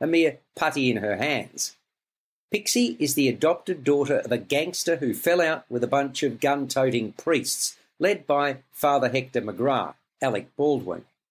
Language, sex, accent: English, male, Australian